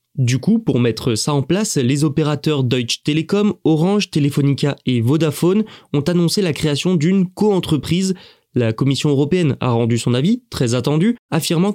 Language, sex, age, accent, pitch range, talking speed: French, male, 20-39, French, 130-175 Hz, 160 wpm